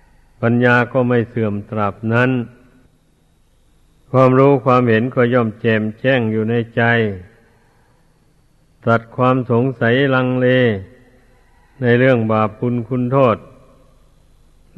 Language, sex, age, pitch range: Thai, male, 60-79, 115-130 Hz